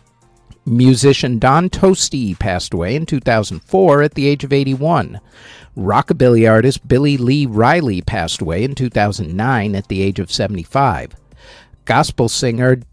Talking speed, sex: 130 wpm, male